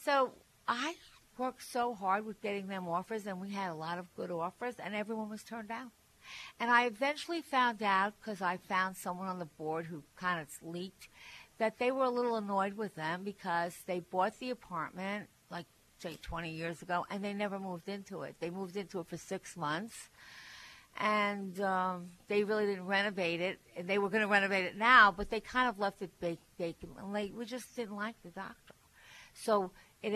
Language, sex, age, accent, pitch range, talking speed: English, female, 60-79, American, 180-220 Hz, 200 wpm